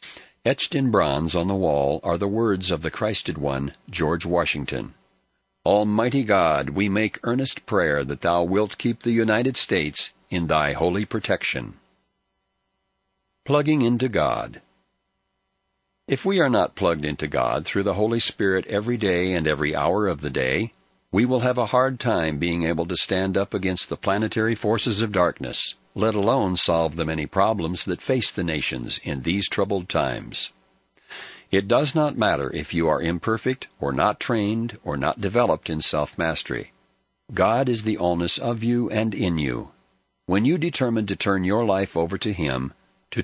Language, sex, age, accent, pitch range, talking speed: English, male, 60-79, American, 85-115 Hz, 170 wpm